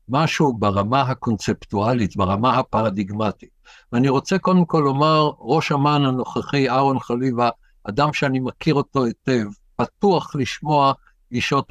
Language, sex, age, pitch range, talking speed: Hebrew, male, 60-79, 130-175 Hz, 120 wpm